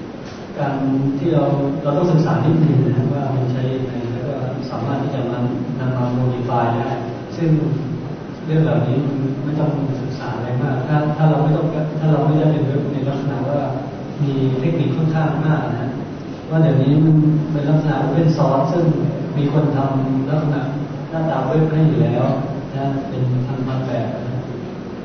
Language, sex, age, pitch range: Thai, male, 20-39, 130-155 Hz